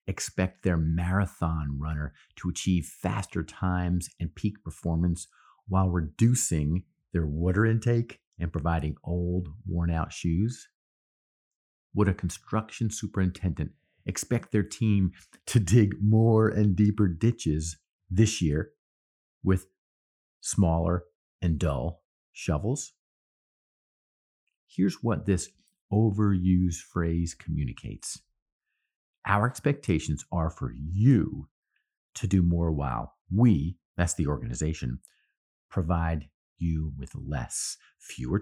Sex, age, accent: male, 50-69, American